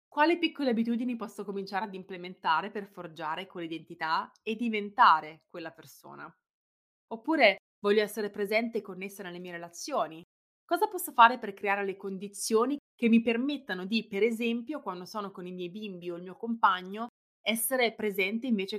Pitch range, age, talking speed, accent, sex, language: 180-230 Hz, 20-39, 155 wpm, native, female, Italian